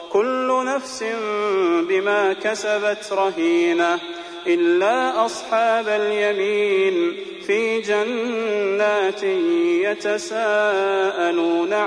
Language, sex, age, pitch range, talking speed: Arabic, male, 30-49, 195-260 Hz, 55 wpm